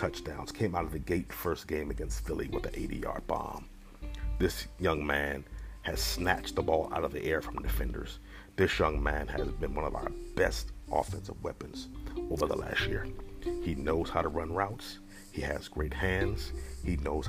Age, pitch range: 50-69, 85-100 Hz